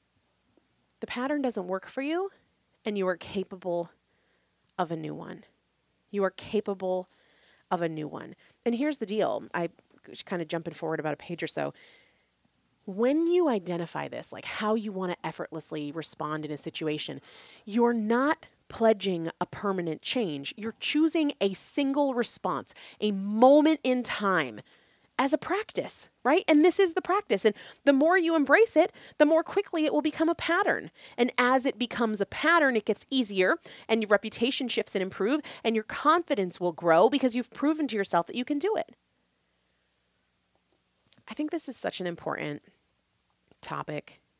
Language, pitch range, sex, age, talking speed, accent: English, 170-285 Hz, female, 30-49, 170 wpm, American